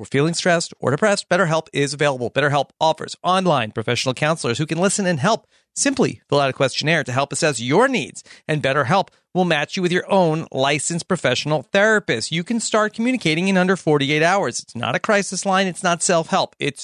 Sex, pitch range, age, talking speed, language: male, 140-200 Hz, 40-59, 200 wpm, English